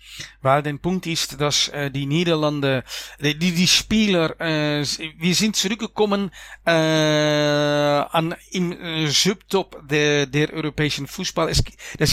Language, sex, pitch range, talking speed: German, male, 150-180 Hz, 115 wpm